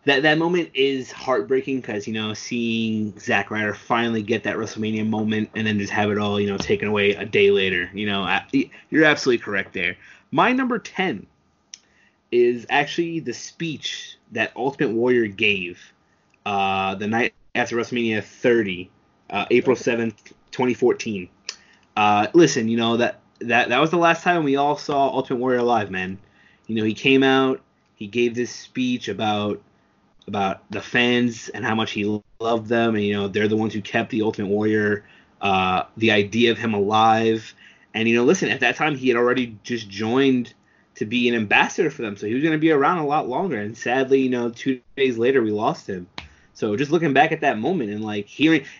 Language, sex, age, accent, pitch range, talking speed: English, male, 20-39, American, 105-135 Hz, 195 wpm